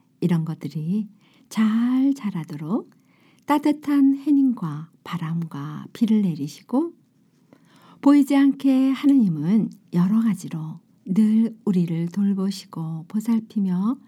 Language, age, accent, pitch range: Korean, 50-69, native, 170-250 Hz